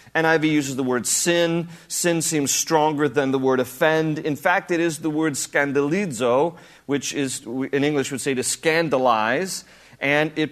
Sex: male